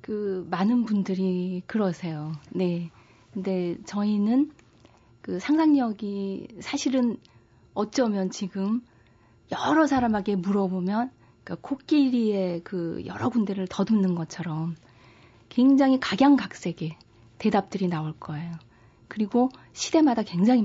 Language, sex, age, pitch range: Korean, female, 30-49, 170-225 Hz